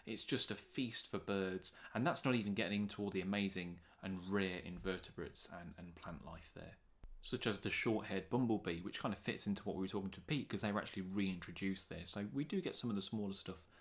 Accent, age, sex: British, 20-39, male